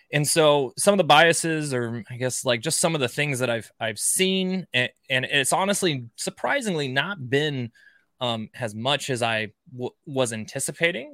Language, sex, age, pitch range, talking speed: English, male, 20-39, 110-140 Hz, 185 wpm